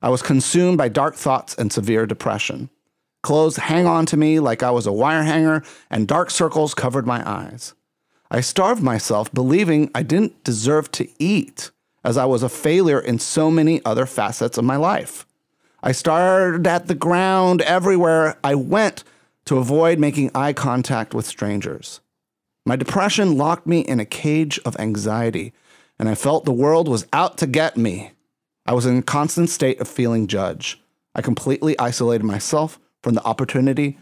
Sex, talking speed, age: male, 175 wpm, 30-49